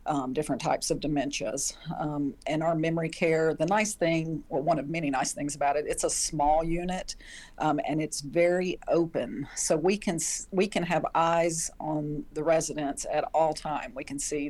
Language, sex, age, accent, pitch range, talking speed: English, female, 50-69, American, 150-175 Hz, 185 wpm